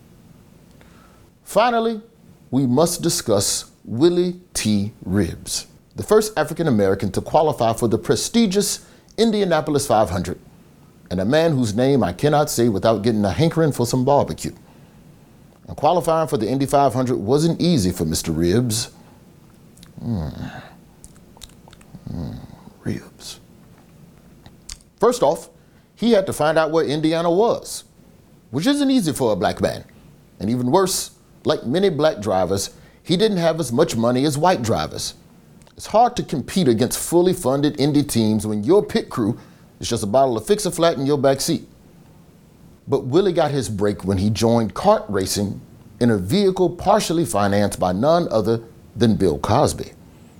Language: English